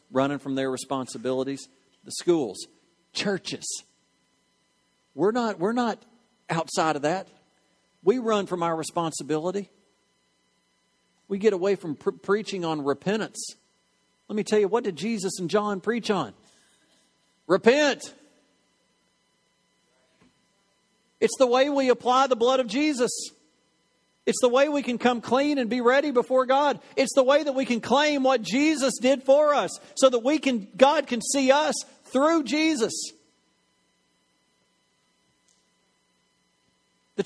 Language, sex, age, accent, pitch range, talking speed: English, male, 50-69, American, 170-260 Hz, 135 wpm